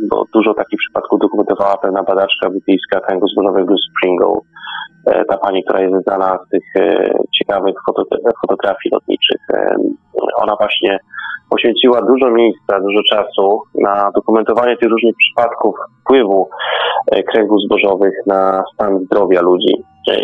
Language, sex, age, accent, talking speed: Polish, male, 30-49, native, 125 wpm